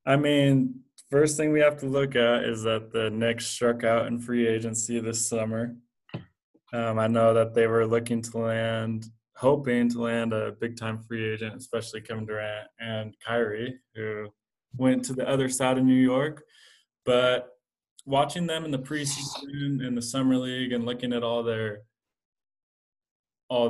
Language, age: English, 20-39